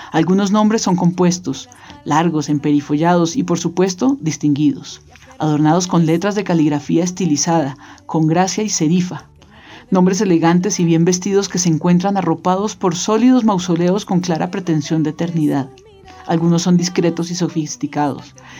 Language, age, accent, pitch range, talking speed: Spanish, 40-59, Colombian, 155-190 Hz, 135 wpm